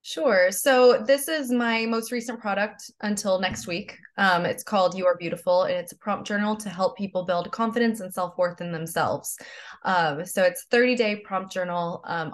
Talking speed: 190 wpm